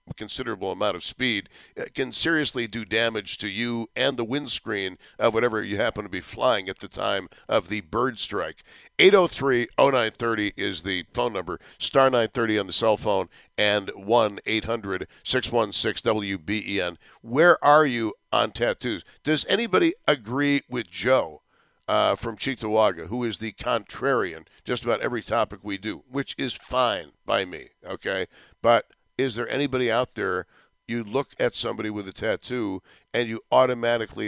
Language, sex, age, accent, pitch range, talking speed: English, male, 50-69, American, 110-130 Hz, 150 wpm